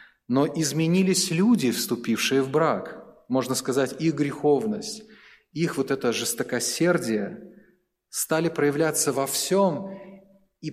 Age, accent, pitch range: 30-49, native, 125-170 Hz